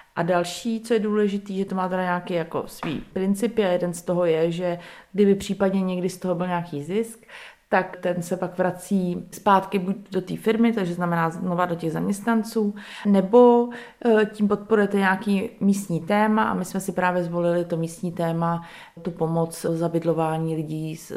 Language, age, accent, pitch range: Czech, 30-49, native, 175-215 Hz